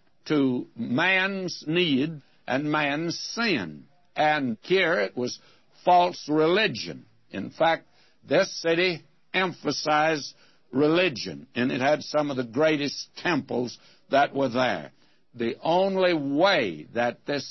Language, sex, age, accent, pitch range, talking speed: English, male, 60-79, American, 140-180 Hz, 115 wpm